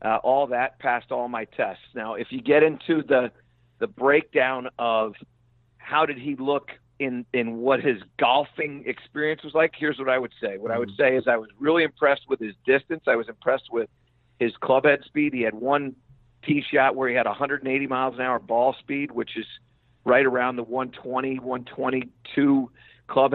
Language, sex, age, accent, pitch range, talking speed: English, male, 50-69, American, 120-140 Hz, 195 wpm